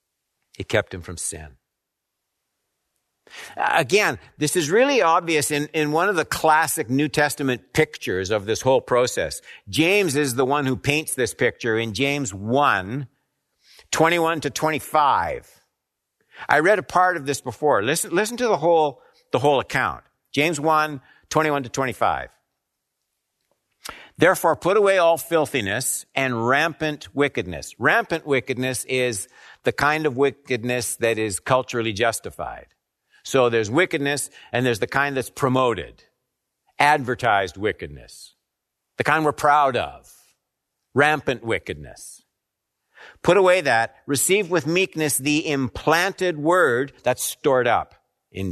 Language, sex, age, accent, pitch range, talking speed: English, male, 60-79, American, 125-160 Hz, 130 wpm